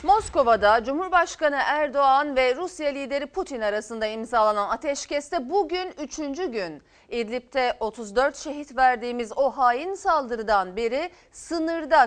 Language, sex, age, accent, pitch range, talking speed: Turkish, female, 40-59, native, 215-335 Hz, 110 wpm